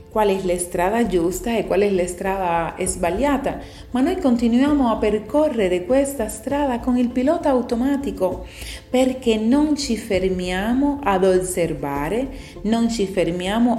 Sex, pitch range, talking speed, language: female, 180-255 Hz, 135 wpm, Italian